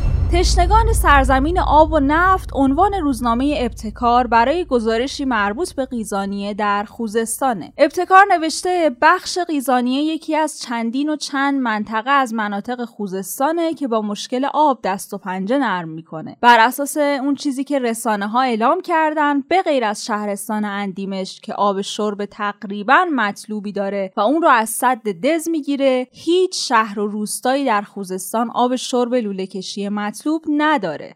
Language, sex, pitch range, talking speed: Persian, female, 205-280 Hz, 145 wpm